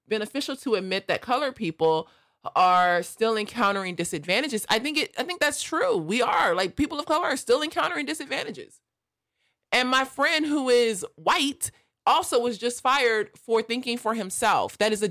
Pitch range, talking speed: 175-245 Hz, 175 wpm